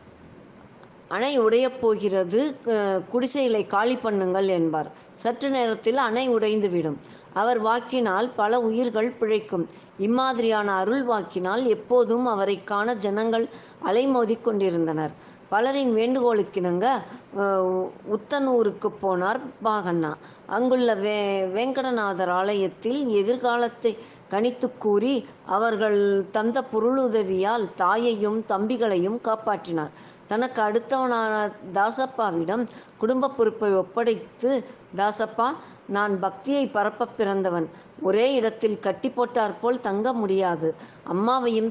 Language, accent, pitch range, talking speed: Tamil, native, 195-240 Hz, 90 wpm